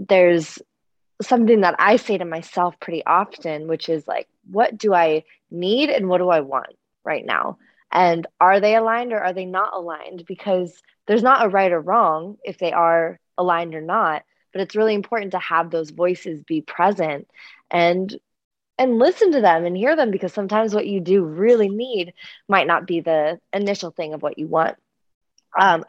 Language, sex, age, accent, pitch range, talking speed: English, female, 20-39, American, 165-195 Hz, 190 wpm